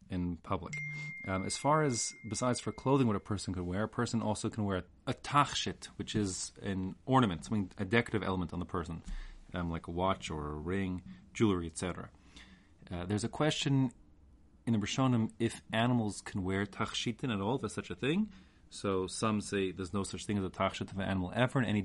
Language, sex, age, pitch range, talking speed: English, male, 30-49, 90-120 Hz, 210 wpm